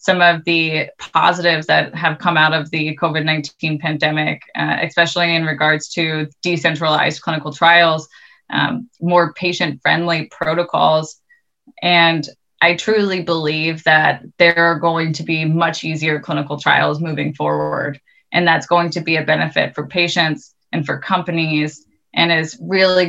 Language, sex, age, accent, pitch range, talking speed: English, female, 20-39, American, 155-175 Hz, 145 wpm